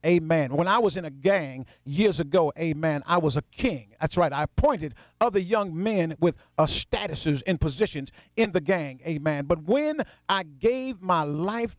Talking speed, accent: 185 wpm, American